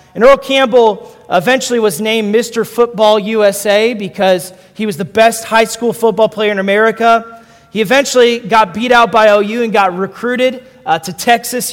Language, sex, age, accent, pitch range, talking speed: English, male, 30-49, American, 190-240 Hz, 170 wpm